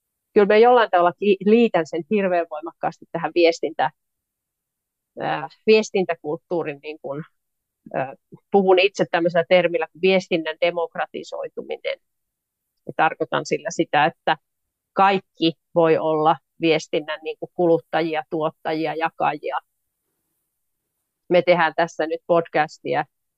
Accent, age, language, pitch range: native, 30-49, Finnish, 165-200 Hz